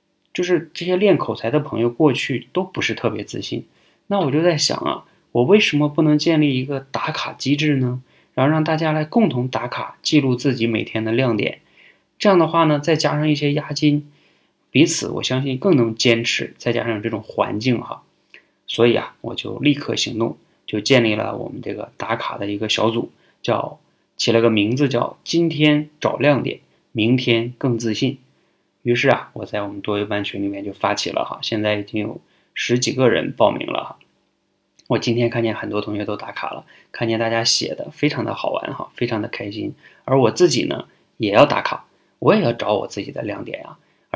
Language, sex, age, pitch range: Chinese, male, 20-39, 110-150 Hz